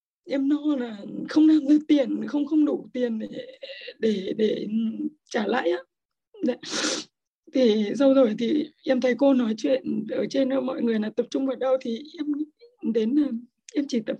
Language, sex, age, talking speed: Vietnamese, female, 20-39, 175 wpm